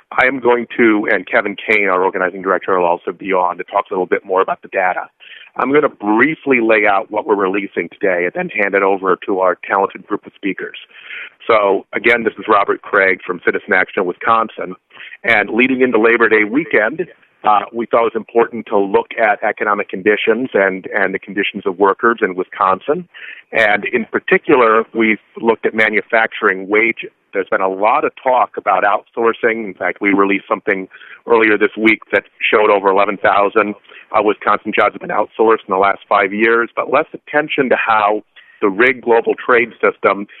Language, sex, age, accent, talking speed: English, male, 40-59, American, 190 wpm